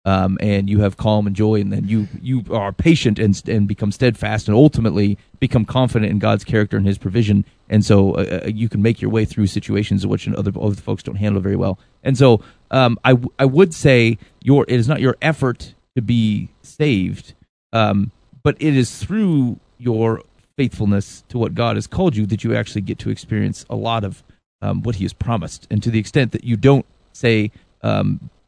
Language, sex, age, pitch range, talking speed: English, male, 30-49, 105-130 Hz, 210 wpm